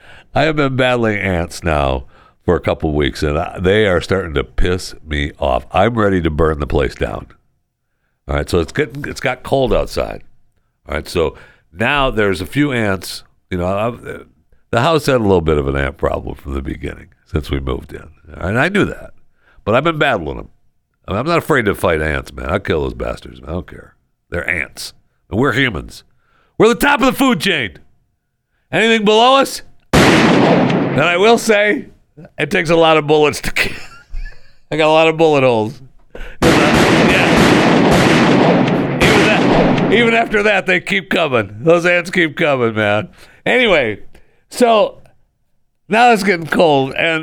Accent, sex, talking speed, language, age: American, male, 185 wpm, English, 60-79